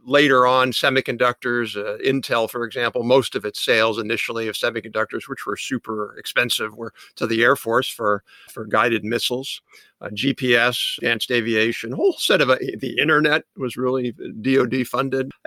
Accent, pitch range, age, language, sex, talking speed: American, 115-135 Hz, 50-69, English, male, 165 wpm